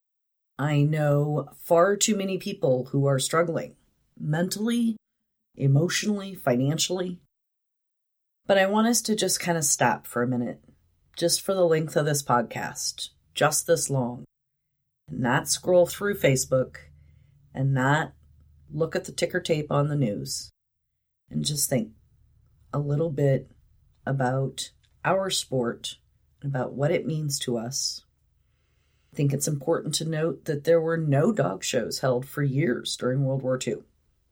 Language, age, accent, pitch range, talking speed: English, 40-59, American, 130-180 Hz, 145 wpm